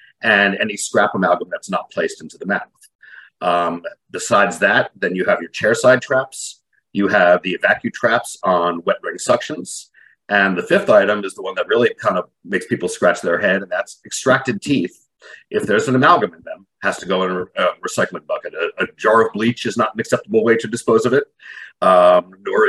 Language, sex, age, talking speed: English, male, 50-69, 205 wpm